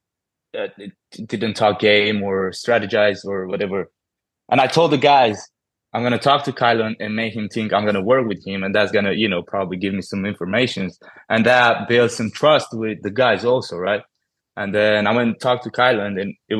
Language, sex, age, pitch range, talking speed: English, male, 20-39, 100-115 Hz, 215 wpm